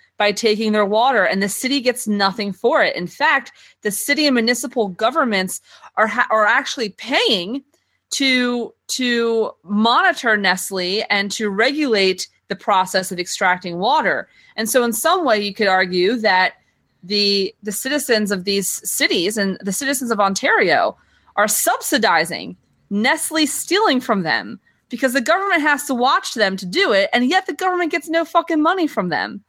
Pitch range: 185-255 Hz